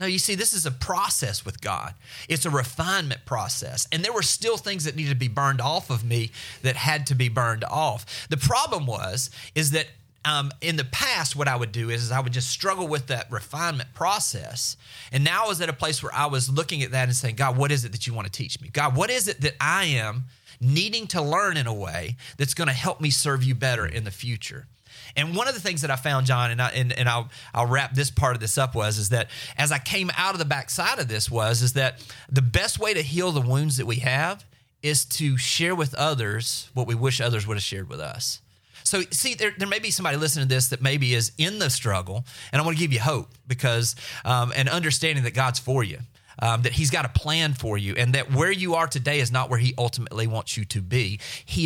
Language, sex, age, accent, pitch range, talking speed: English, male, 30-49, American, 120-150 Hz, 255 wpm